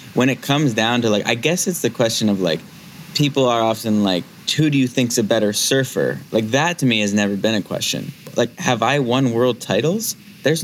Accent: American